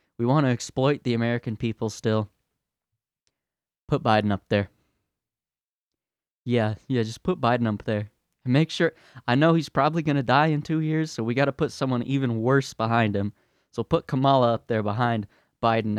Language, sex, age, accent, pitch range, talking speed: English, male, 20-39, American, 130-185 Hz, 175 wpm